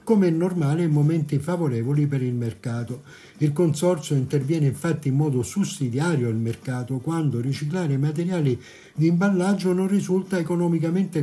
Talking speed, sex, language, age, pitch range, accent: 140 wpm, male, Italian, 60-79, 140-180 Hz, native